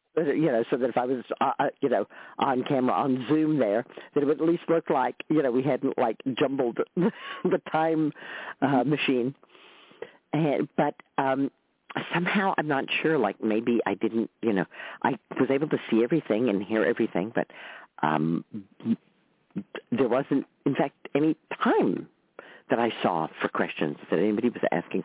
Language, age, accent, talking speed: English, 50-69, American, 170 wpm